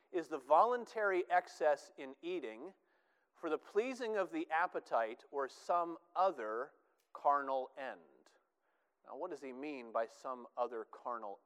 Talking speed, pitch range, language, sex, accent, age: 135 wpm, 145-225 Hz, English, male, American, 40-59